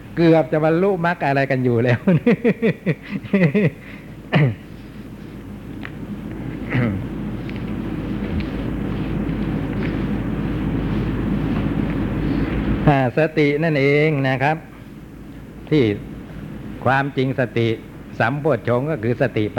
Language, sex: Thai, male